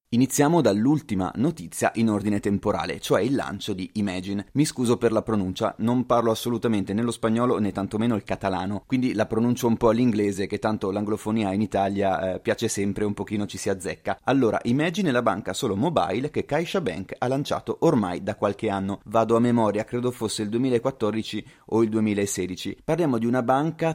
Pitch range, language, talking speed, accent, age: 100-130 Hz, Italian, 185 wpm, native, 30-49